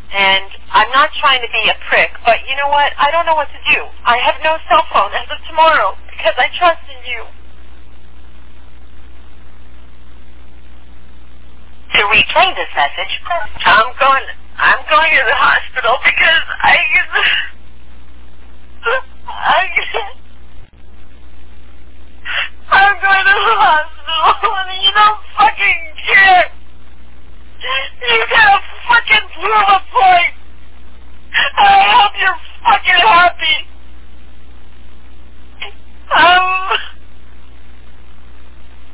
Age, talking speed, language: 40-59, 105 wpm, English